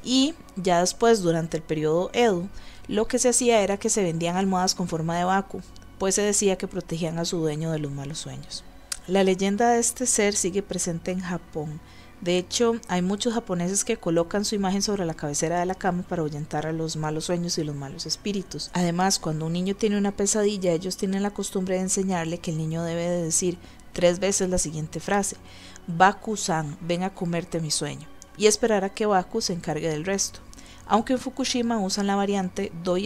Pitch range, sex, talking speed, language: 165-200 Hz, female, 205 wpm, Spanish